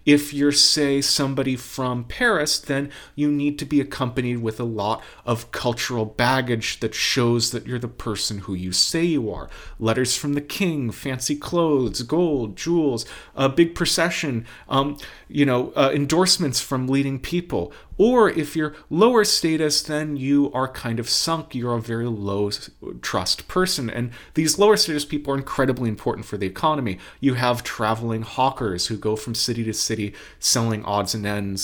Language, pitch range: English, 105-145 Hz